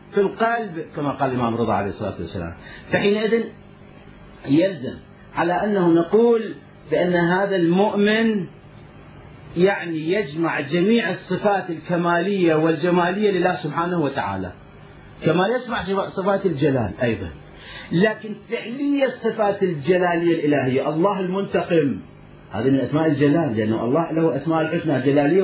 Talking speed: 115 wpm